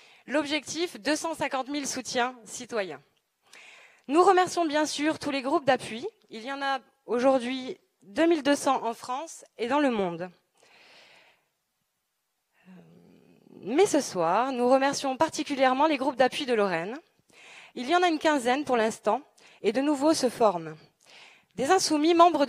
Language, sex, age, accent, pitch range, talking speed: French, female, 20-39, French, 240-310 Hz, 140 wpm